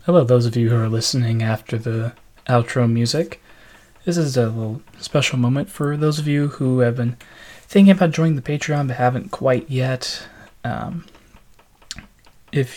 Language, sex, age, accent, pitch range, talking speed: English, male, 20-39, American, 120-150 Hz, 165 wpm